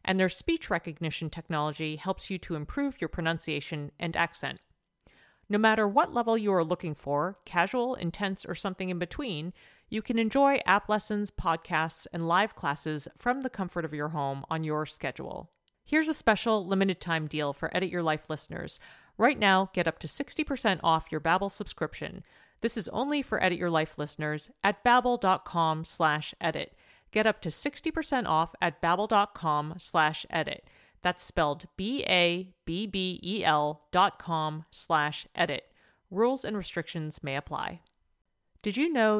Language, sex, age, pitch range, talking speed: English, female, 40-59, 160-220 Hz, 155 wpm